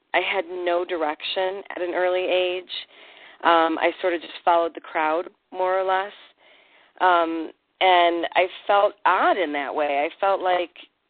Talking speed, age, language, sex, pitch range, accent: 160 wpm, 40-59, English, female, 155-185 Hz, American